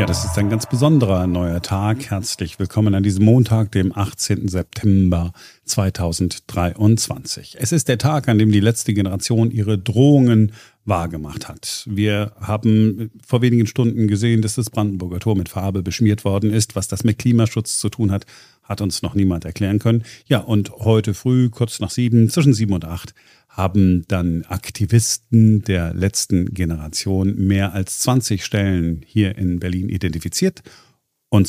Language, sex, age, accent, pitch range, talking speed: German, male, 40-59, German, 95-115 Hz, 160 wpm